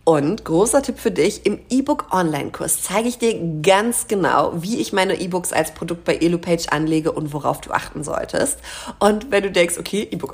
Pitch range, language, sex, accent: 160-250 Hz, German, female, German